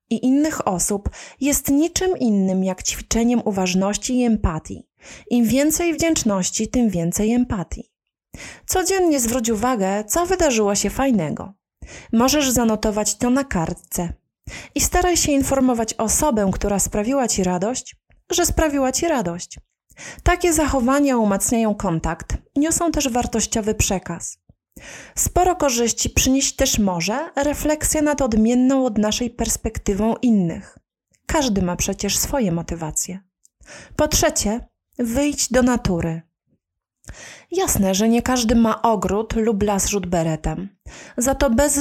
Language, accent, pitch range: Polish, native, 200-275 Hz